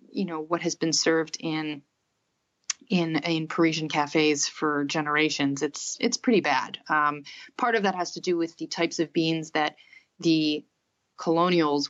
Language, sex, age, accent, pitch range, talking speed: English, female, 30-49, American, 155-185 Hz, 160 wpm